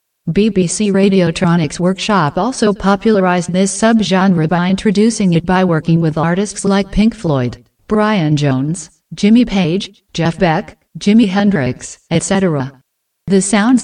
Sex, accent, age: female, American, 50-69